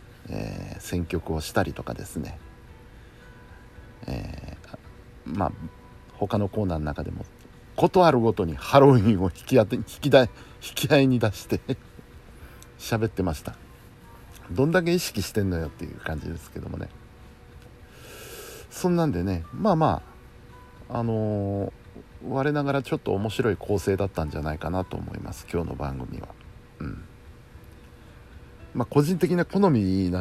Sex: male